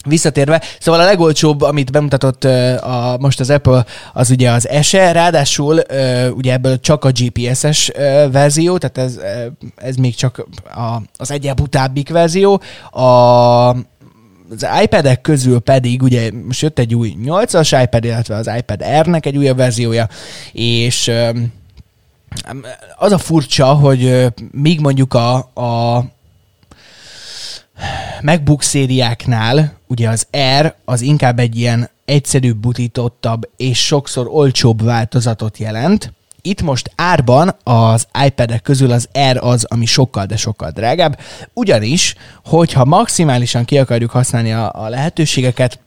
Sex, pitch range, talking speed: male, 120-145 Hz, 135 wpm